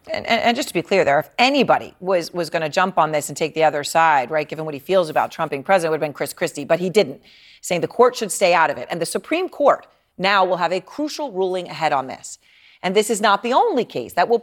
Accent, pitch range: American, 170-240 Hz